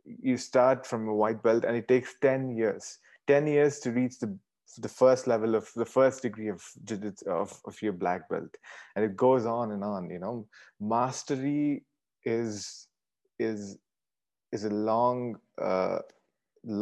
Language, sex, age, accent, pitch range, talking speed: English, male, 30-49, Indian, 100-125 Hz, 155 wpm